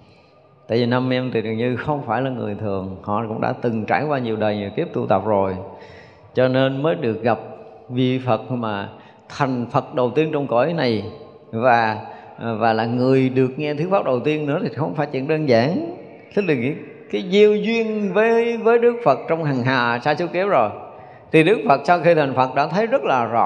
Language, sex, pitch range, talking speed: Vietnamese, male, 115-150 Hz, 215 wpm